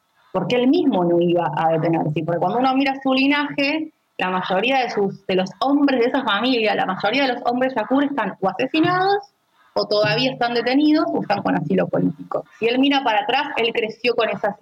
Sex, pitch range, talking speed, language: female, 190-265 Hz, 210 wpm, Spanish